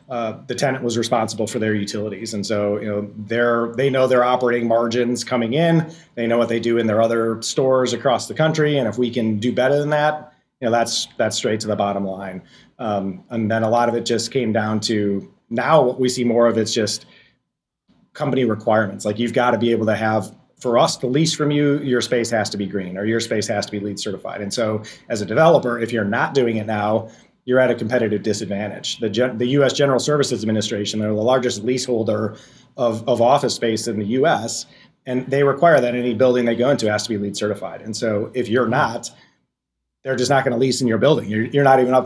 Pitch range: 110-130 Hz